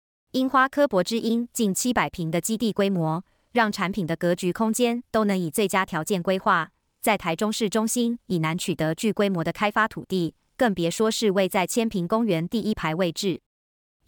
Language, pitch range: Chinese, 175-225 Hz